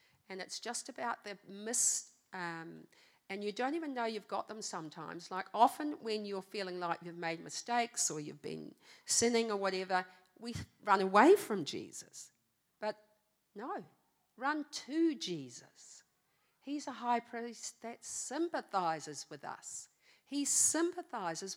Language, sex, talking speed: English, female, 140 wpm